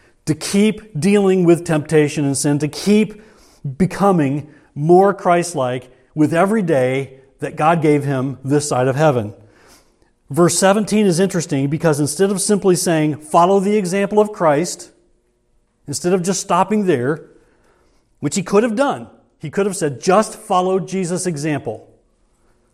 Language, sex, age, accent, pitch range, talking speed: English, male, 40-59, American, 130-175 Hz, 145 wpm